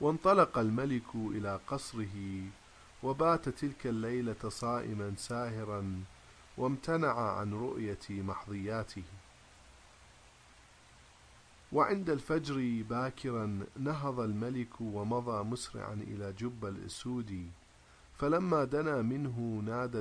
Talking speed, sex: 80 wpm, male